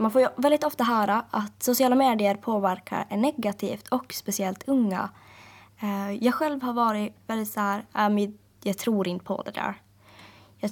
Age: 20-39